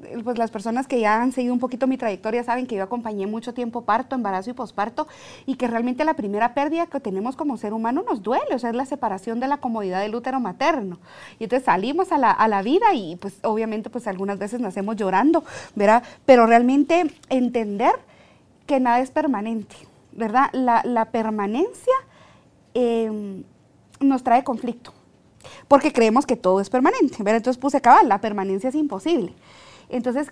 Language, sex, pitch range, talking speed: Spanish, female, 210-265 Hz, 185 wpm